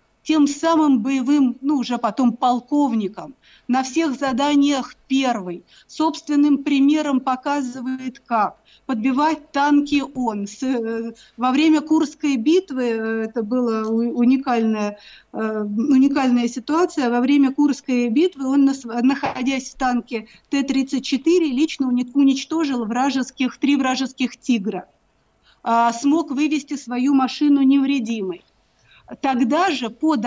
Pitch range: 240-285 Hz